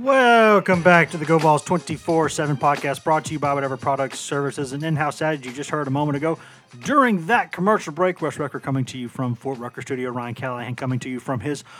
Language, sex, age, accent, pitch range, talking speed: English, male, 30-49, American, 130-155 Hz, 225 wpm